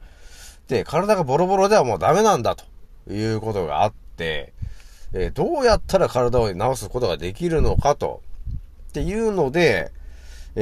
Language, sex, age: Japanese, male, 40-59